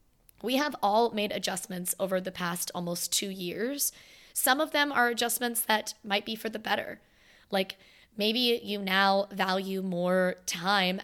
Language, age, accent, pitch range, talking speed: English, 20-39, American, 195-230 Hz, 160 wpm